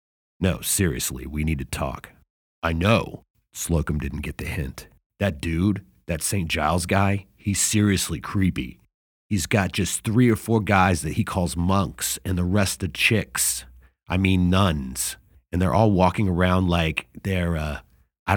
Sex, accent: male, American